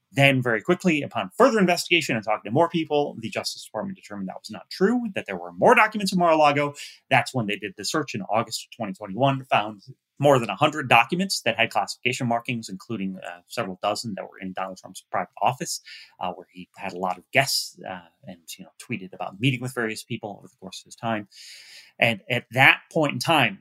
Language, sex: English, male